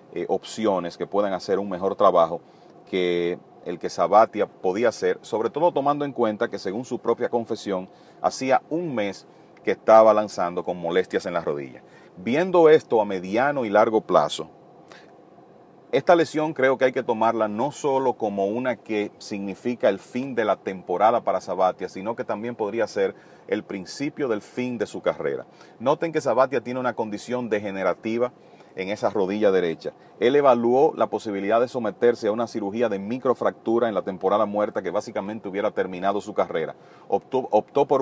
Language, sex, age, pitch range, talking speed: English, male, 40-59, 105-130 Hz, 170 wpm